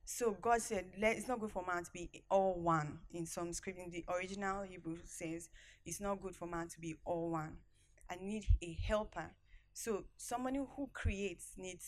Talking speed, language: 190 wpm, English